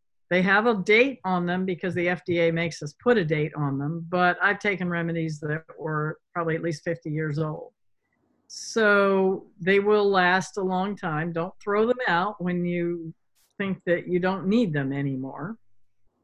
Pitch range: 170-220 Hz